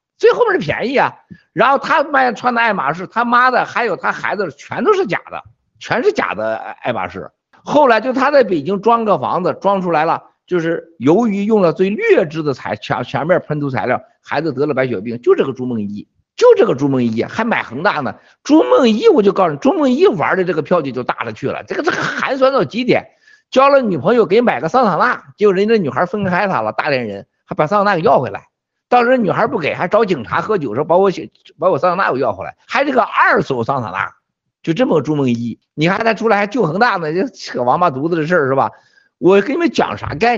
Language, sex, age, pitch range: Chinese, male, 50-69, 155-255 Hz